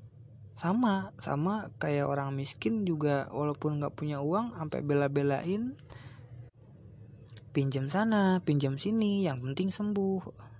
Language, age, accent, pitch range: Indonesian, 20-39, native, 130-180 Hz